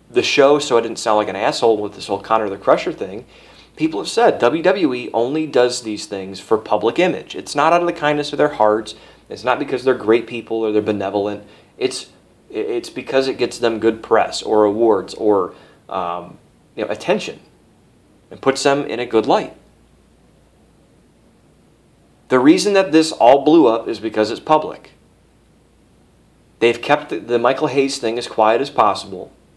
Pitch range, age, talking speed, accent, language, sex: 110-165 Hz, 30-49, 180 wpm, American, English, male